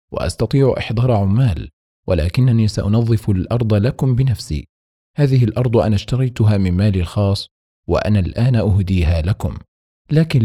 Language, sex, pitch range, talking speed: Arabic, male, 90-115 Hz, 115 wpm